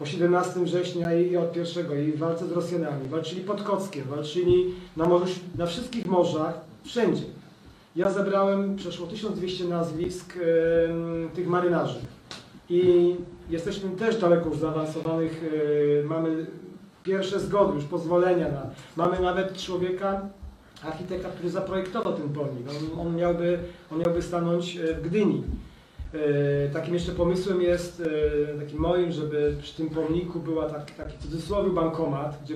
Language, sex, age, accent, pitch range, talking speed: Polish, male, 40-59, native, 160-185 Hz, 140 wpm